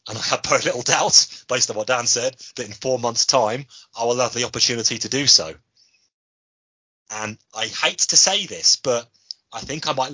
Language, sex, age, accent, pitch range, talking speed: English, male, 30-49, British, 95-125 Hz, 205 wpm